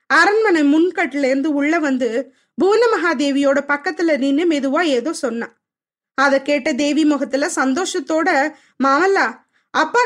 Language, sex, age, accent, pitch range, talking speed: Tamil, female, 20-39, native, 280-360 Hz, 105 wpm